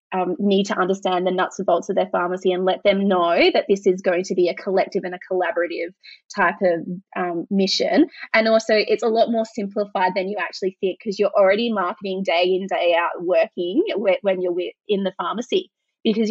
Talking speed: 205 wpm